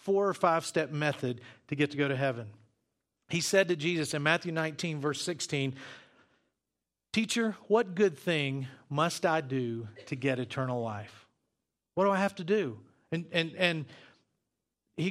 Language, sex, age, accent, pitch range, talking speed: English, male, 40-59, American, 135-180 Hz, 160 wpm